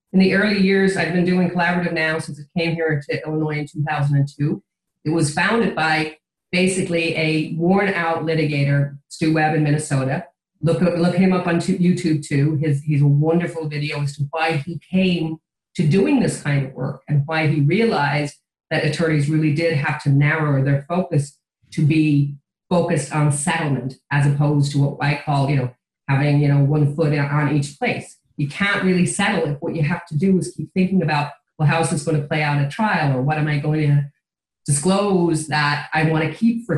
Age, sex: 40-59, female